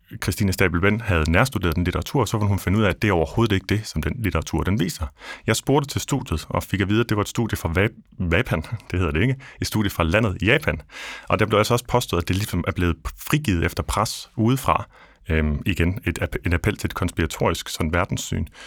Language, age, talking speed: Danish, 30-49, 245 wpm